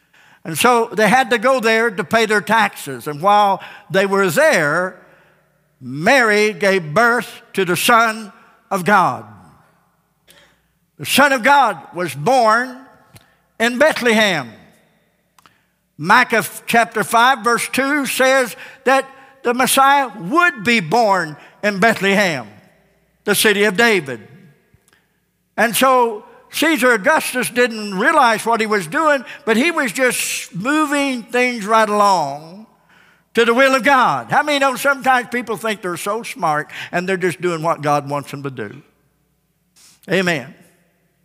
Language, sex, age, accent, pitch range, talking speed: English, male, 60-79, American, 175-245 Hz, 140 wpm